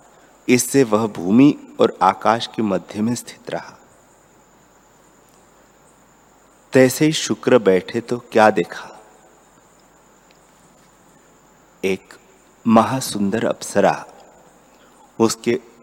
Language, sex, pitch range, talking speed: Hindi, male, 100-125 Hz, 80 wpm